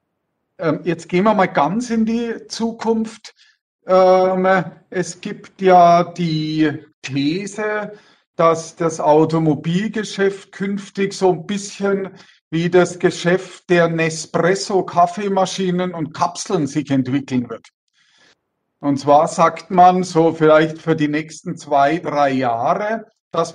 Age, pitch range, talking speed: 50-69, 160-190 Hz, 110 wpm